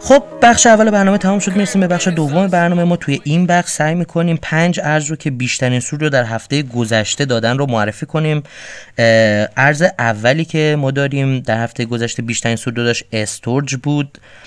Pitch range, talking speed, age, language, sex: 115-145 Hz, 185 wpm, 30-49, Persian, male